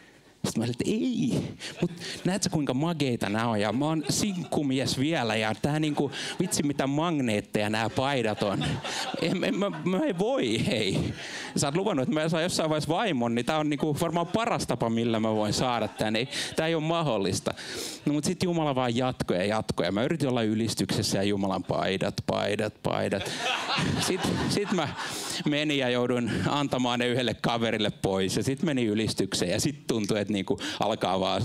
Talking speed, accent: 175 wpm, native